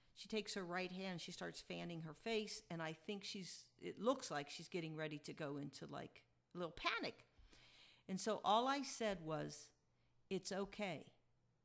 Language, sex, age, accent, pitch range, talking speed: English, female, 50-69, American, 165-220 Hz, 185 wpm